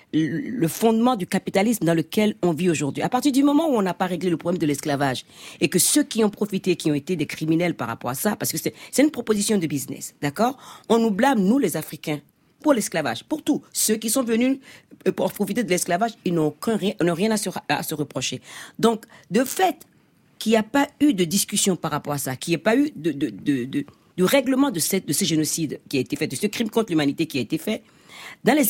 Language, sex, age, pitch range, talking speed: French, female, 40-59, 160-230 Hz, 250 wpm